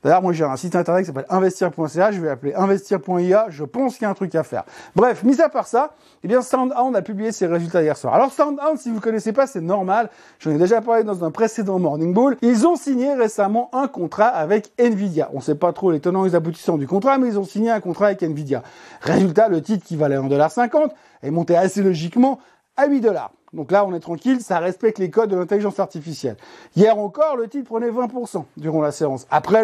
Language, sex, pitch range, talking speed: French, male, 170-230 Hz, 235 wpm